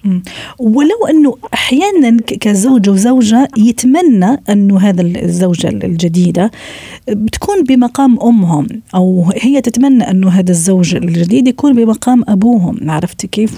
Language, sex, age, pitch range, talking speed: Arabic, female, 40-59, 185-235 Hz, 110 wpm